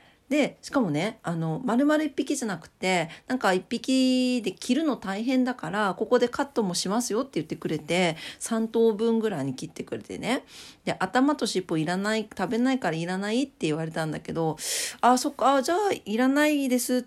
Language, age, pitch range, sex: Japanese, 40-59, 165-235 Hz, female